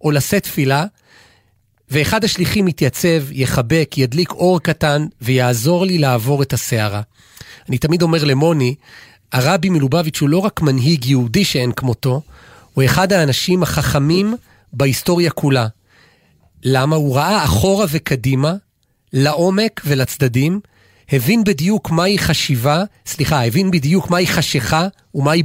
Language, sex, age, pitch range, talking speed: Hebrew, male, 40-59, 135-180 Hz, 120 wpm